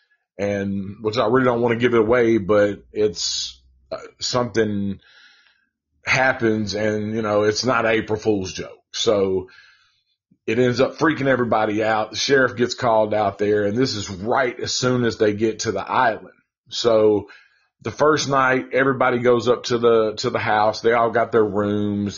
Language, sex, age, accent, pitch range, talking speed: English, male, 40-59, American, 105-120 Hz, 175 wpm